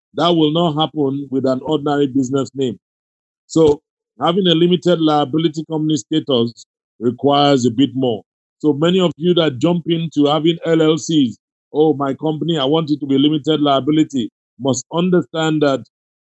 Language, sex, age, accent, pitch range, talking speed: English, male, 50-69, Nigerian, 135-160 Hz, 155 wpm